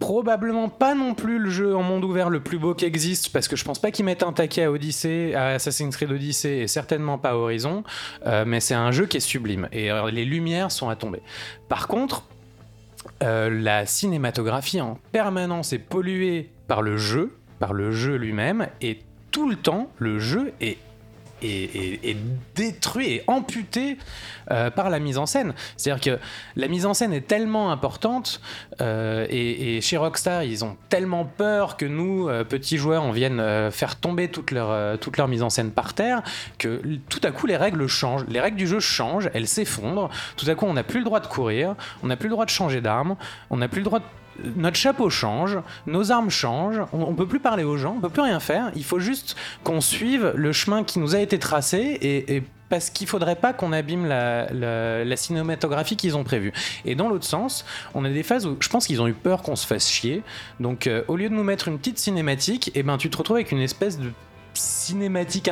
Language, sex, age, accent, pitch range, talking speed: French, male, 20-39, French, 115-185 Hz, 225 wpm